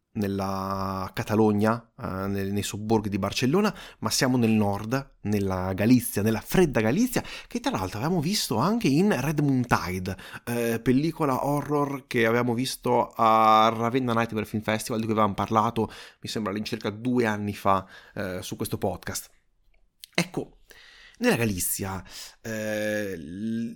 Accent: native